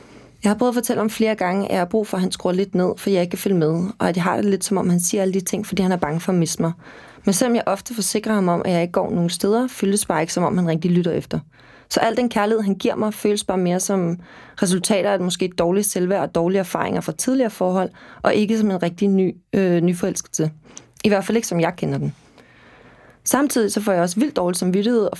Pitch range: 180-215 Hz